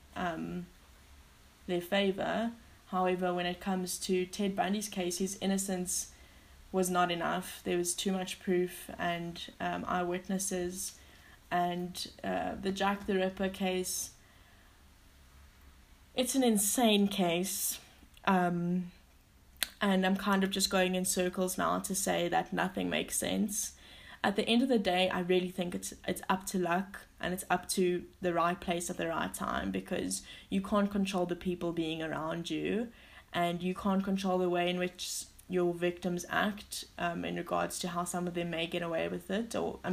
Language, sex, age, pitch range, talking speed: English, female, 10-29, 170-195 Hz, 165 wpm